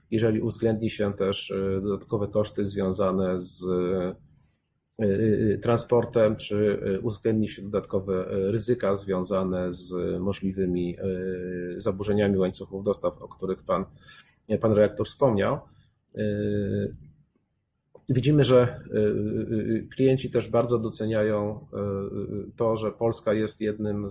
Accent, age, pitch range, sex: native, 30-49, 100-120 Hz, male